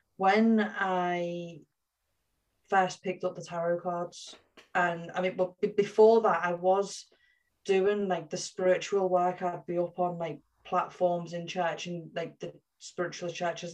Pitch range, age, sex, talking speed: 175-195 Hz, 30-49, female, 150 wpm